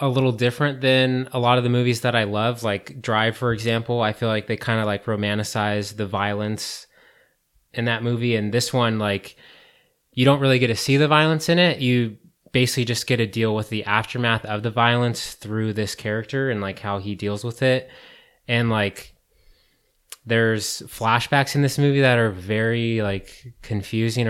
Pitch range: 105-120 Hz